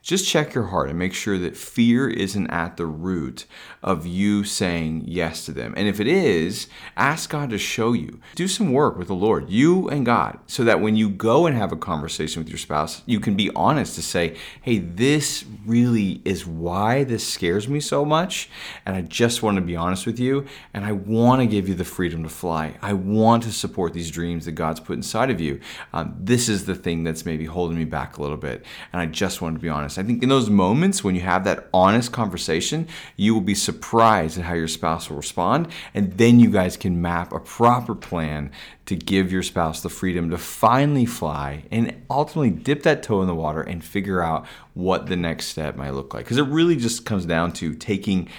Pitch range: 85-125 Hz